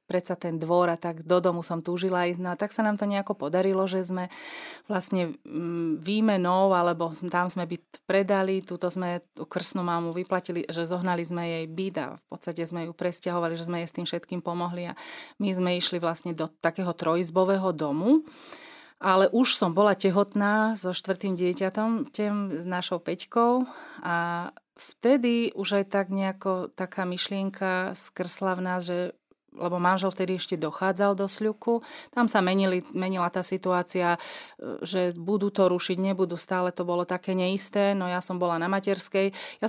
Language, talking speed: Slovak, 170 wpm